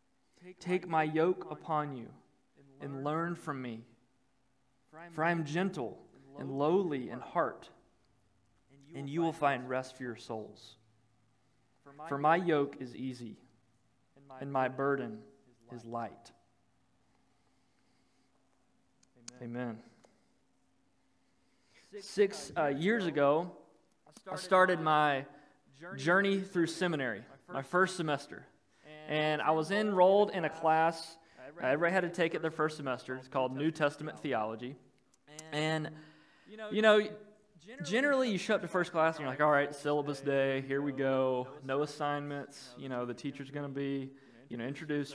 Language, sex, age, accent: English, male, 20-39, American